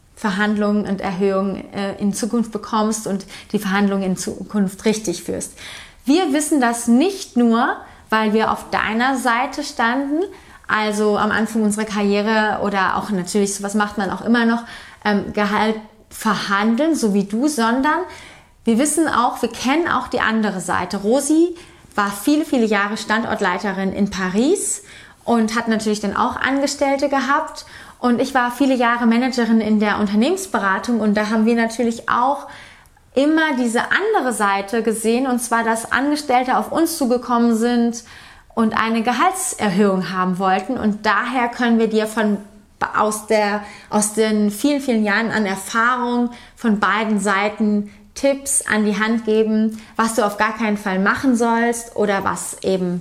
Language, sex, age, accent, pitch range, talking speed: German, female, 30-49, German, 205-245 Hz, 150 wpm